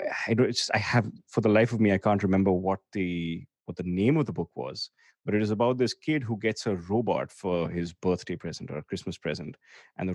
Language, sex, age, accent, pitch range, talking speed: English, male, 30-49, Indian, 90-110 Hz, 240 wpm